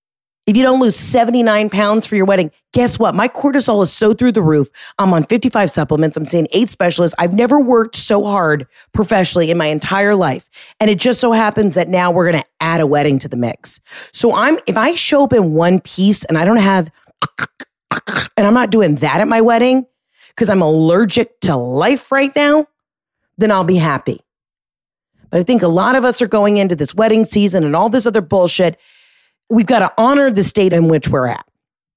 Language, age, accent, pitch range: English, 30-49, American, 160-225 Hz